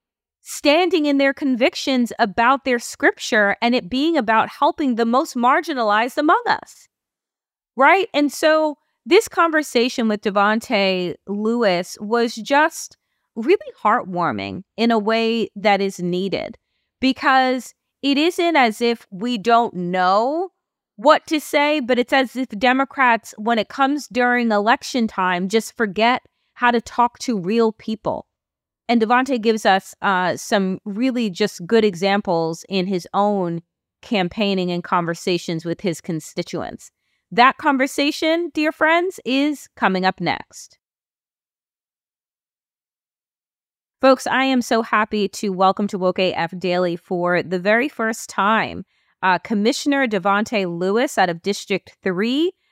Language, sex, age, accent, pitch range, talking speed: English, female, 30-49, American, 195-270 Hz, 130 wpm